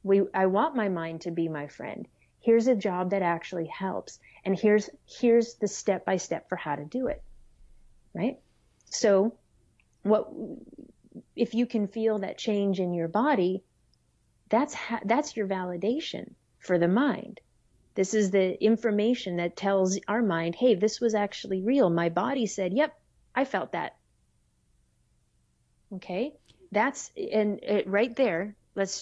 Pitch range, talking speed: 190-220 Hz, 155 wpm